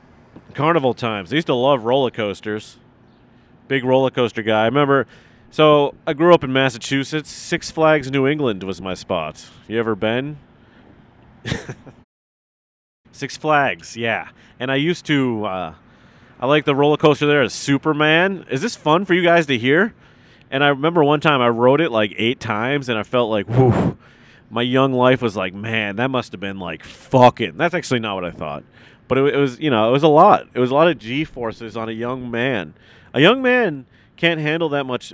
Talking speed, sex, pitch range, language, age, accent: 195 wpm, male, 115-145 Hz, English, 30-49, American